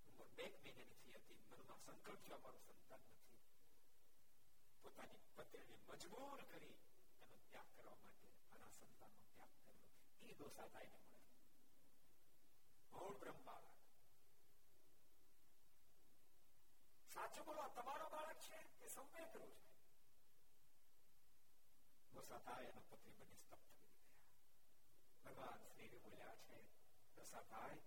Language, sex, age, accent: Gujarati, male, 60-79, native